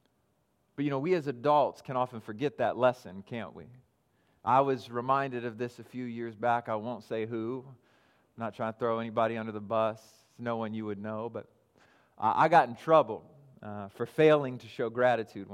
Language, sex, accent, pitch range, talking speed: English, male, American, 120-170 Hz, 195 wpm